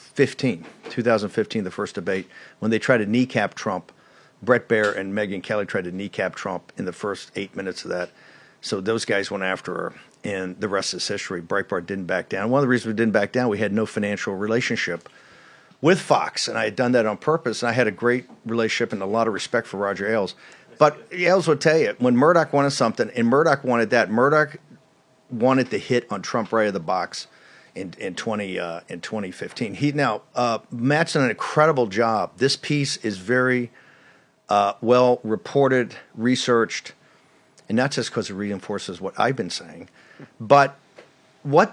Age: 50-69